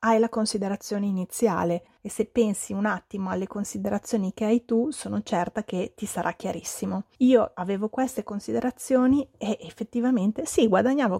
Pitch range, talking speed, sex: 200-235 Hz, 150 wpm, female